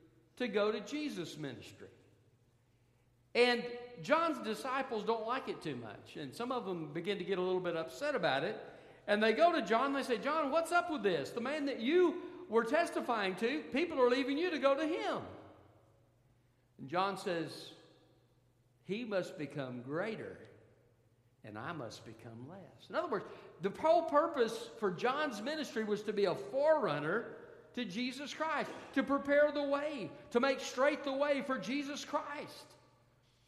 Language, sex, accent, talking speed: English, male, American, 170 wpm